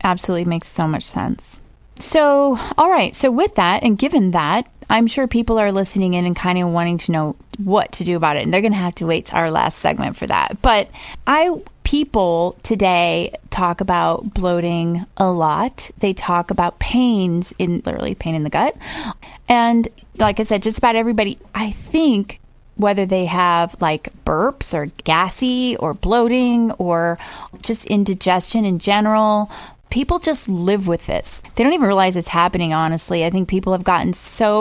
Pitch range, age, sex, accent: 175-225 Hz, 20-39, female, American